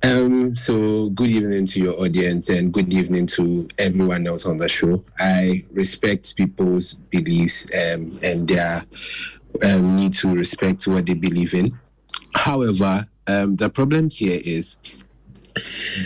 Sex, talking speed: male, 140 wpm